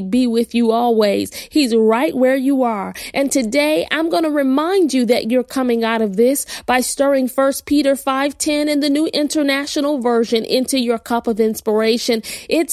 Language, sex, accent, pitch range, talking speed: English, female, American, 245-300 Hz, 185 wpm